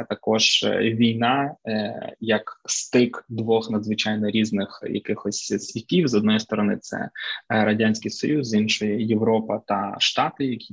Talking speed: 115 wpm